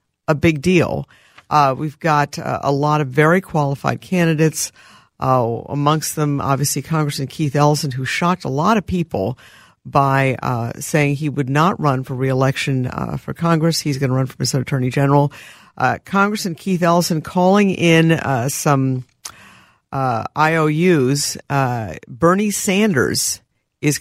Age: 50-69